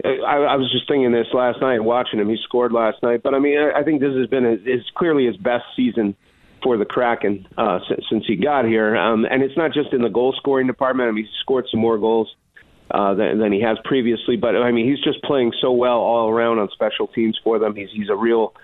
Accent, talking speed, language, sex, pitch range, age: American, 255 wpm, English, male, 105-125 Hz, 40-59